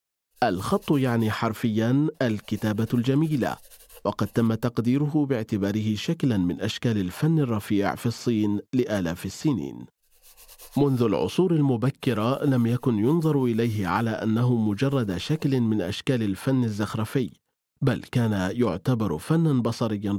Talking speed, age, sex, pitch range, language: 115 wpm, 40-59, male, 110-145 Hz, Arabic